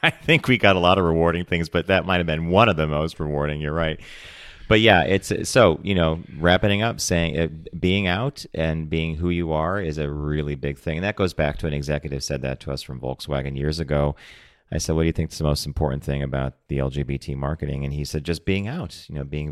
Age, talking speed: 40-59, 250 wpm